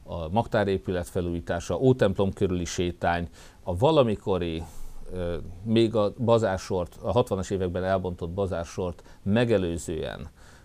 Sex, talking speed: male, 95 wpm